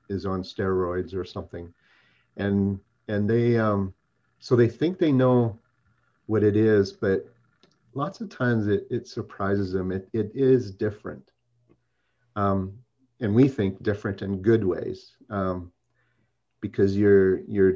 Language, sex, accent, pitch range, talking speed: English, male, American, 95-120 Hz, 140 wpm